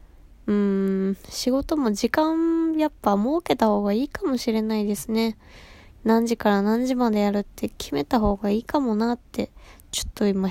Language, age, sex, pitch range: Japanese, 20-39, female, 200-250 Hz